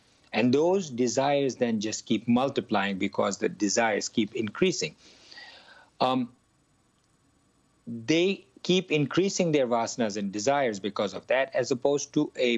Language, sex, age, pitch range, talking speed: English, male, 50-69, 115-150 Hz, 130 wpm